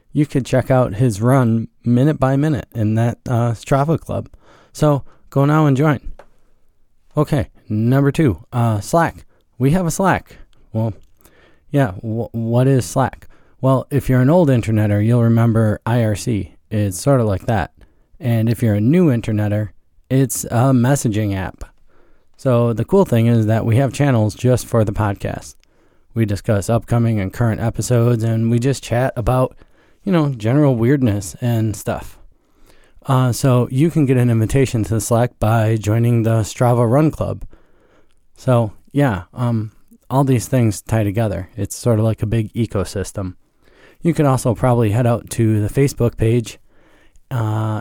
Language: English